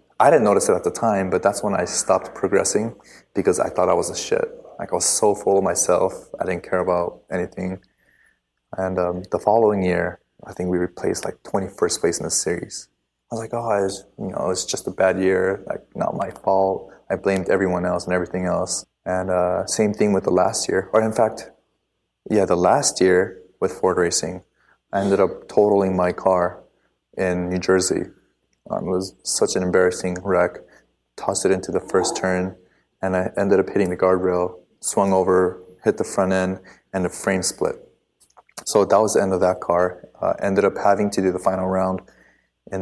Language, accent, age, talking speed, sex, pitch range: English, Canadian, 20-39, 200 wpm, male, 90-95 Hz